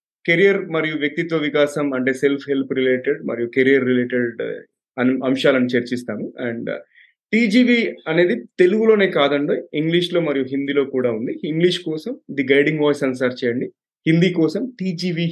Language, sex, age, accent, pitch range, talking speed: Telugu, male, 30-49, native, 130-170 Hz, 135 wpm